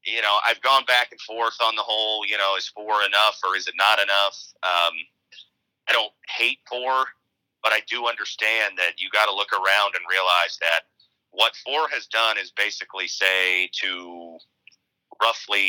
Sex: male